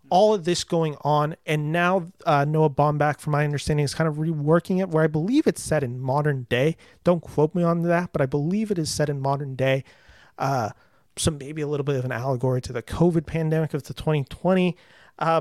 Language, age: English, 30-49